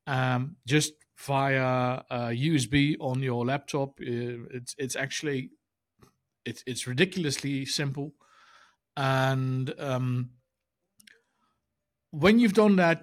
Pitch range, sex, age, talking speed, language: 120-145 Hz, male, 50-69, 100 wpm, English